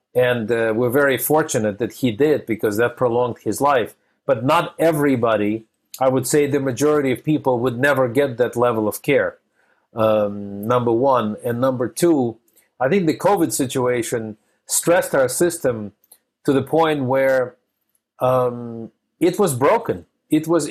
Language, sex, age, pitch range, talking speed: English, male, 50-69, 125-165 Hz, 155 wpm